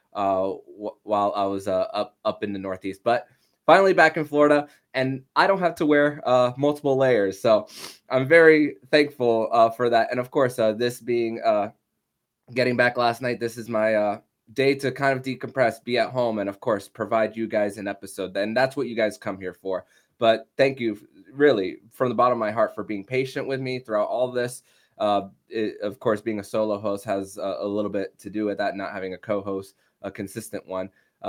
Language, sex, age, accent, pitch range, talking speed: English, male, 20-39, American, 100-125 Hz, 220 wpm